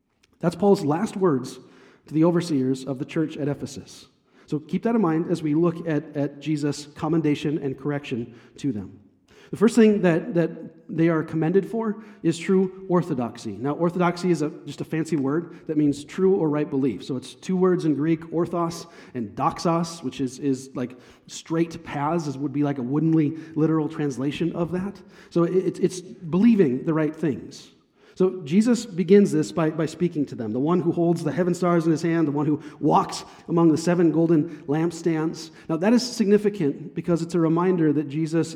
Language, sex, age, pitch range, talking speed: English, male, 40-59, 145-175 Hz, 195 wpm